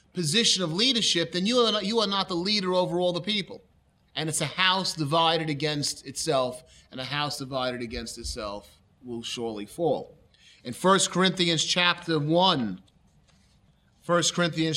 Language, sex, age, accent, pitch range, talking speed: English, male, 30-49, American, 145-185 Hz, 150 wpm